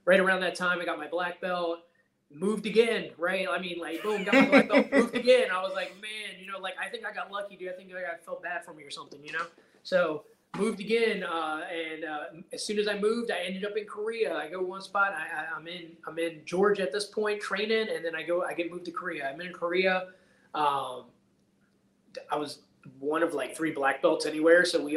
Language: English